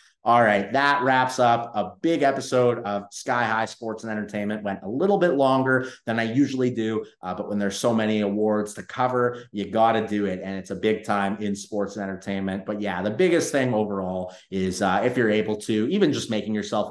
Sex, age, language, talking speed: male, 30-49, English, 220 wpm